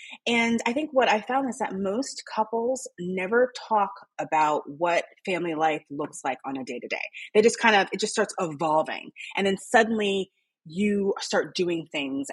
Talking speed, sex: 185 wpm, female